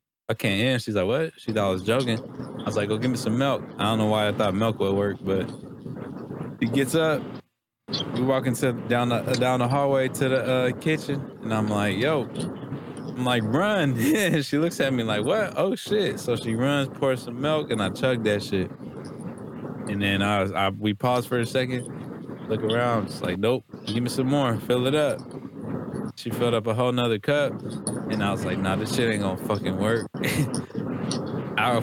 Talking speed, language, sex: 210 wpm, English, male